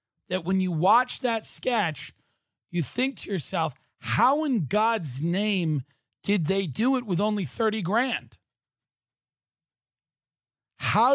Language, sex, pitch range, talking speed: English, male, 125-200 Hz, 125 wpm